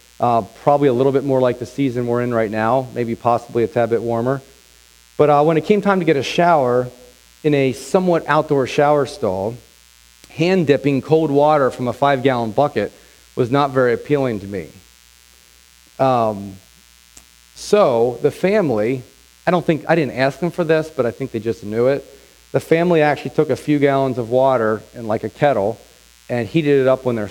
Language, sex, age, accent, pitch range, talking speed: English, male, 40-59, American, 95-140 Hz, 190 wpm